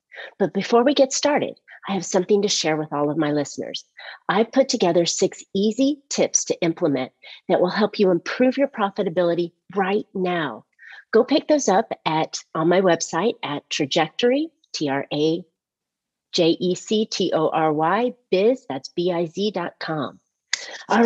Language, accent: English, American